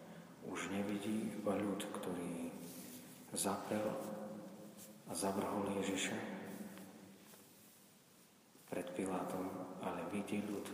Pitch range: 95-115 Hz